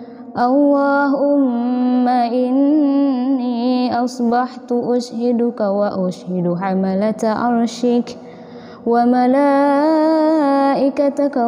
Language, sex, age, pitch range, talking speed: Indonesian, female, 20-39, 220-250 Hz, 50 wpm